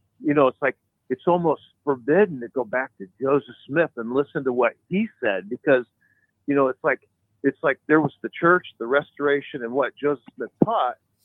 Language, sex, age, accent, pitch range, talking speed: English, male, 50-69, American, 135-195 Hz, 195 wpm